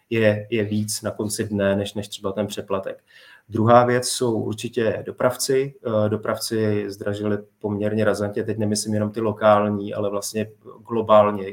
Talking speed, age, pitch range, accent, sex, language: 145 wpm, 30-49, 105-110 Hz, native, male, Czech